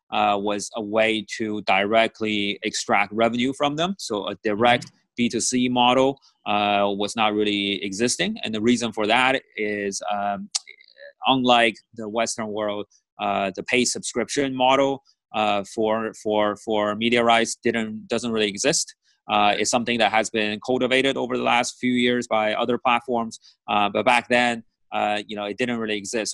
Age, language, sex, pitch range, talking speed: 30-49, English, male, 105-120 Hz, 160 wpm